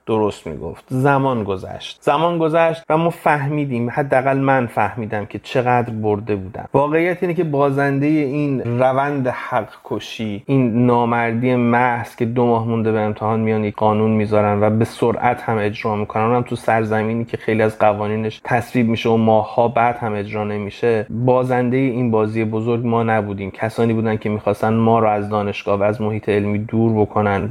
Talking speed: 170 wpm